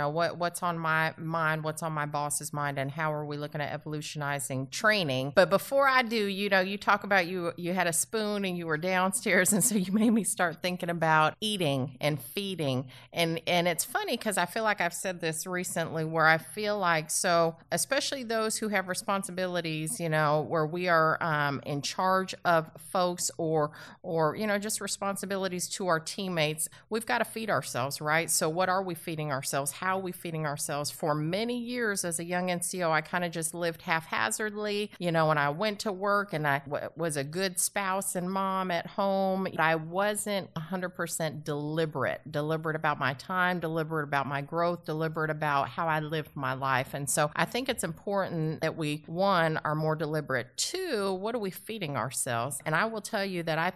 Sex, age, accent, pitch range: female, 30-49, American, 155-190 Hz